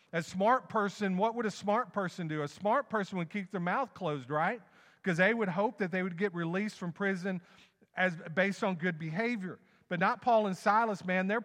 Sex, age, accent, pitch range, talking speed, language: male, 40-59, American, 140-195 Hz, 215 wpm, English